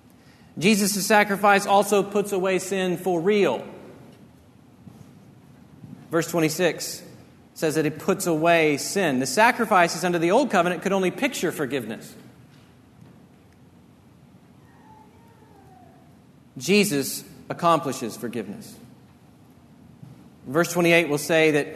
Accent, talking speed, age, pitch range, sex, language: American, 95 wpm, 40-59, 155-190 Hz, male, English